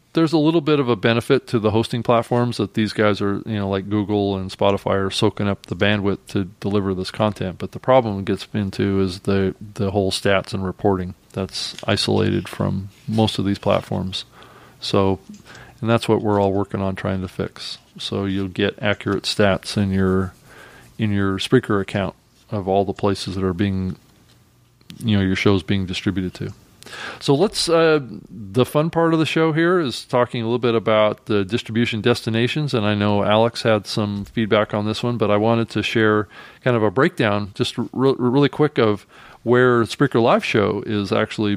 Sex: male